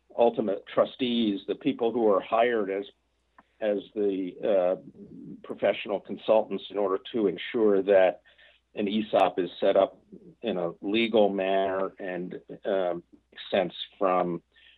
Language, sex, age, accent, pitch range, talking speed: English, male, 50-69, American, 95-110 Hz, 125 wpm